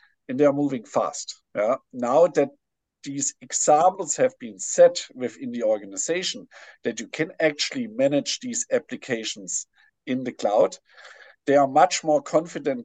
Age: 50-69